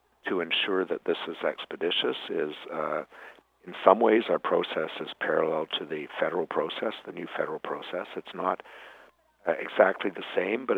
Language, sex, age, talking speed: English, male, 60-79, 165 wpm